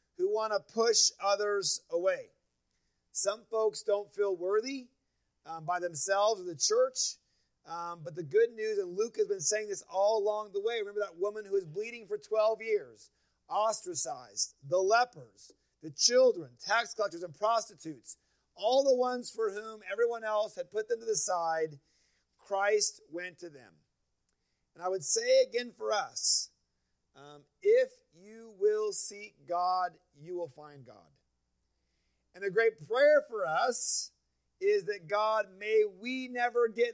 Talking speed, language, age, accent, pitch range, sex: 160 wpm, English, 30-49, American, 165-230 Hz, male